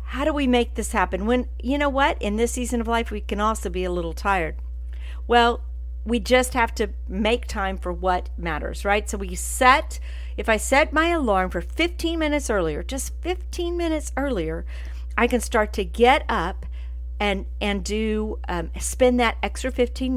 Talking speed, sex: 185 wpm, female